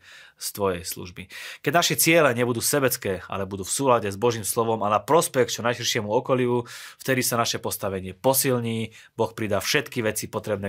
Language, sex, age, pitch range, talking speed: Slovak, male, 30-49, 100-120 Hz, 175 wpm